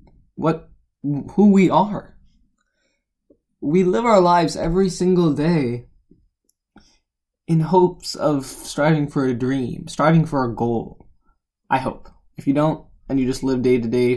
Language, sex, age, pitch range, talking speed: English, male, 20-39, 120-165 Hz, 145 wpm